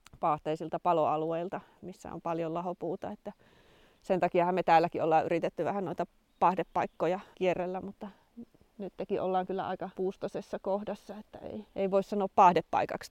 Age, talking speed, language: 30-49, 140 wpm, Finnish